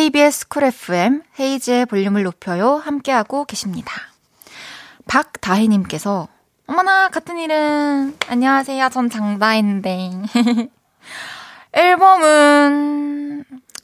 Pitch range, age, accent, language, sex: 215-290 Hz, 20-39, native, Korean, female